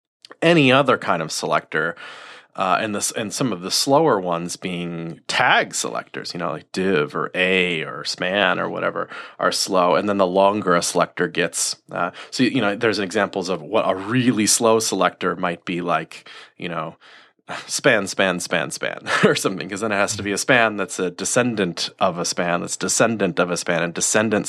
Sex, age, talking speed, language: male, 30-49, 195 wpm, English